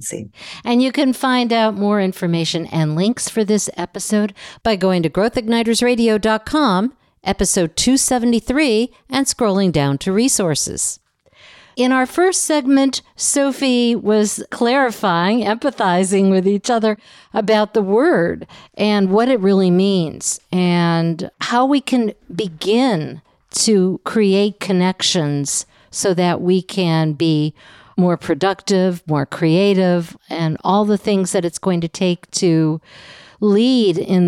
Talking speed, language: 125 wpm, English